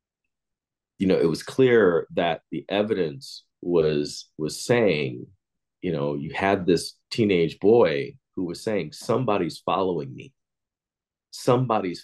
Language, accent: English, American